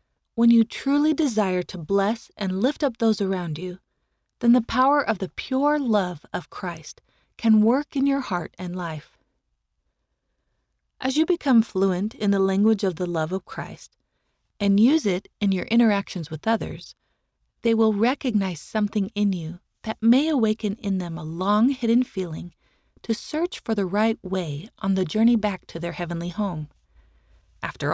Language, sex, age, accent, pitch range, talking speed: English, female, 30-49, American, 170-230 Hz, 170 wpm